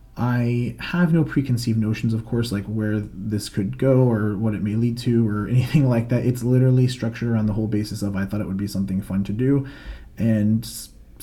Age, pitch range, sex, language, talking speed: 30-49, 110-125 Hz, male, English, 215 wpm